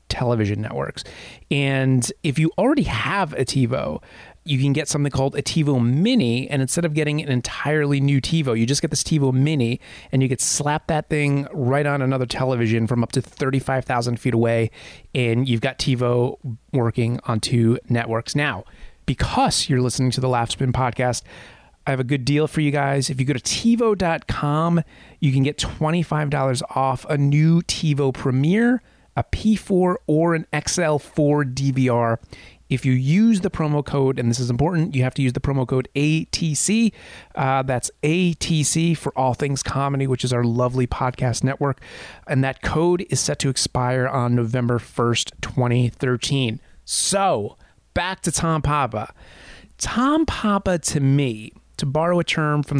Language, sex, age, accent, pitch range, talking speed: English, male, 30-49, American, 125-155 Hz, 170 wpm